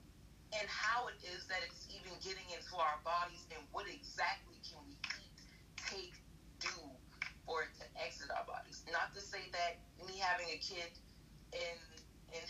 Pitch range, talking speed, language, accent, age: 150-185 Hz, 170 wpm, English, American, 30-49